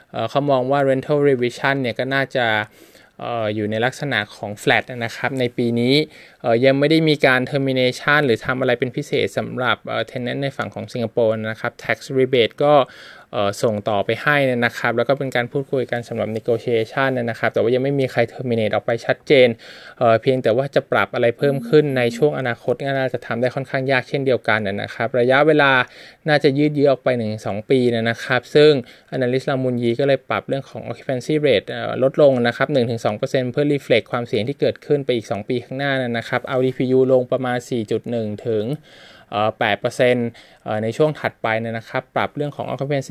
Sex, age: male, 20-39